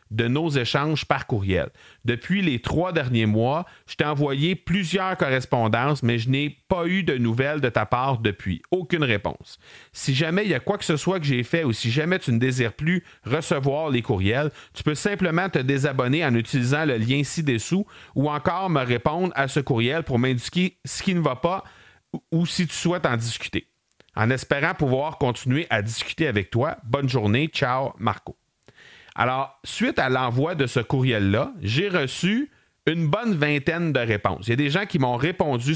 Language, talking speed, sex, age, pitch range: French, 190 wpm, male, 40-59, 115-165 Hz